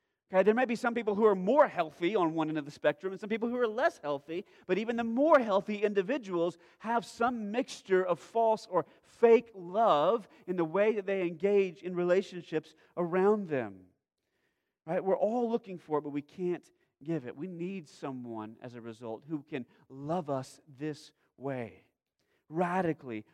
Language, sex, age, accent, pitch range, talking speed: English, male, 40-59, American, 125-190 Hz, 180 wpm